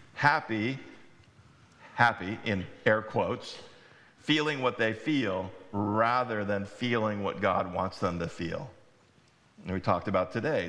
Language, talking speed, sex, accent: English, 130 wpm, male, American